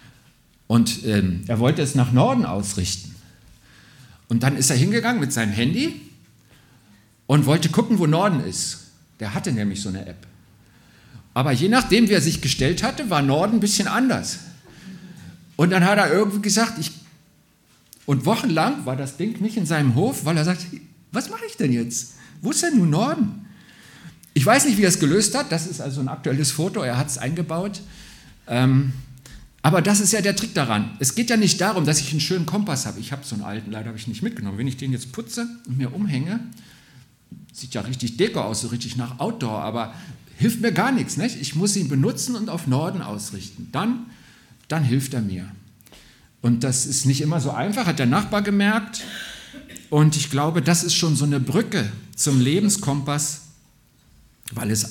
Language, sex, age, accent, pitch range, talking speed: German, male, 50-69, German, 125-195 Hz, 195 wpm